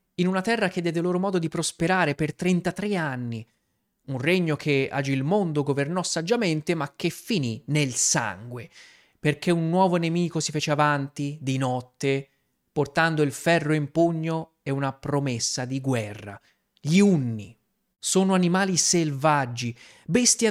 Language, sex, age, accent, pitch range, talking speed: Italian, male, 30-49, native, 140-185 Hz, 145 wpm